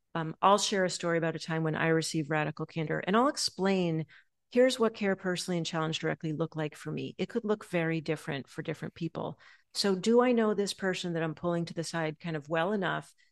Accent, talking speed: American, 230 wpm